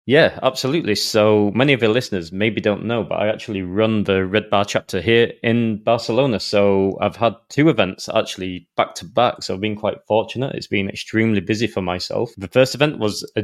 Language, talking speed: English, 205 wpm